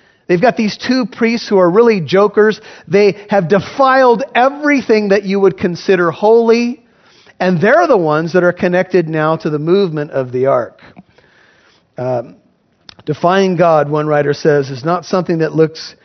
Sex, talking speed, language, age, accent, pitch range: male, 160 wpm, English, 40-59, American, 150-210 Hz